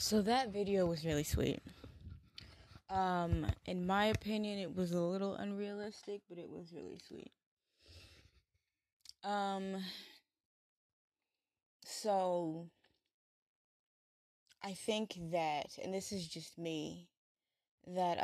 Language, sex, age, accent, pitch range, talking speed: English, female, 20-39, American, 160-200 Hz, 100 wpm